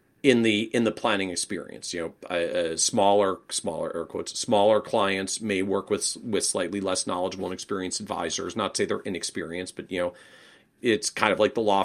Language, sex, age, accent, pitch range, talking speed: English, male, 40-59, American, 95-120 Hz, 195 wpm